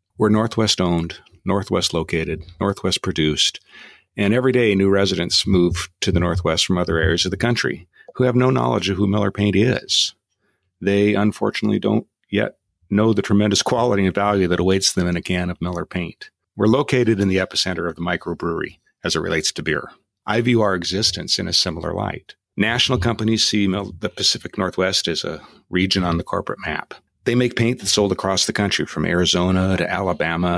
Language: English